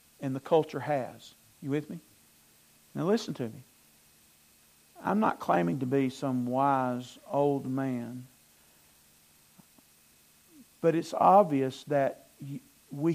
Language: English